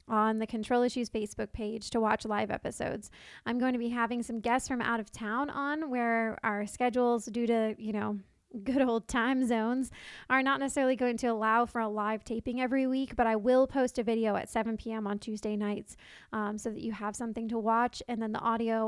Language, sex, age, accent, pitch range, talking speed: English, female, 20-39, American, 225-255 Hz, 220 wpm